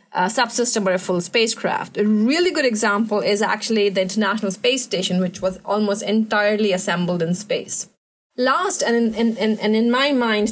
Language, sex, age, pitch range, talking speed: English, female, 30-49, 200-240 Hz, 175 wpm